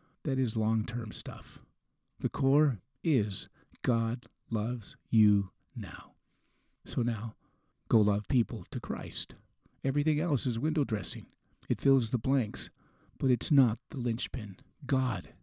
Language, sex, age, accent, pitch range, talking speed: English, male, 50-69, American, 110-135 Hz, 130 wpm